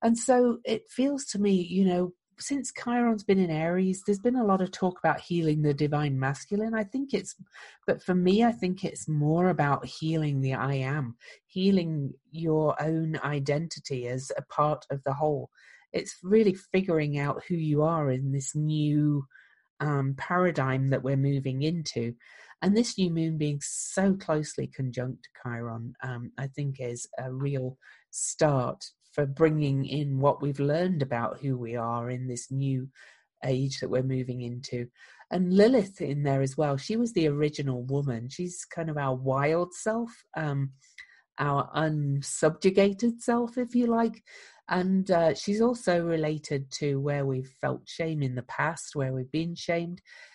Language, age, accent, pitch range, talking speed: English, 40-59, British, 135-185 Hz, 165 wpm